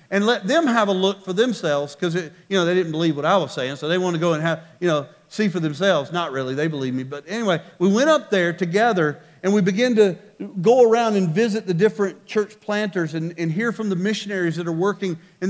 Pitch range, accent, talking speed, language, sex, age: 145-210 Hz, American, 250 wpm, English, male, 40-59